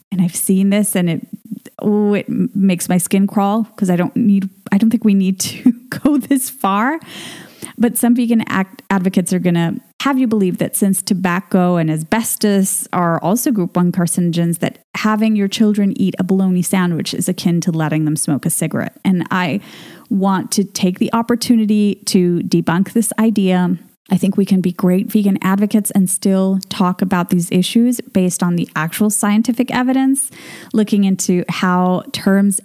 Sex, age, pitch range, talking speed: female, 20-39, 180-225 Hz, 180 wpm